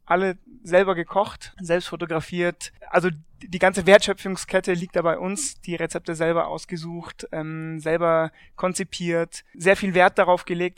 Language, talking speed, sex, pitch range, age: German, 140 wpm, male, 165-195 Hz, 20-39